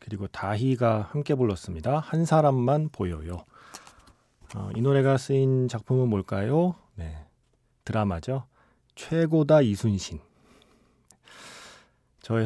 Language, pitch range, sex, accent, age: Korean, 95-135 Hz, male, native, 40-59